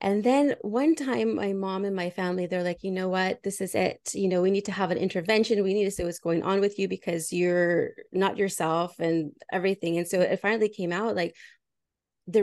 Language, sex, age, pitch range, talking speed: English, female, 20-39, 180-225 Hz, 230 wpm